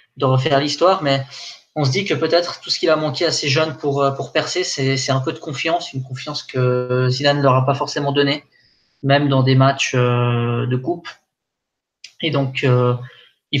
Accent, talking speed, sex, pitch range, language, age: French, 200 wpm, male, 130-150 Hz, French, 20-39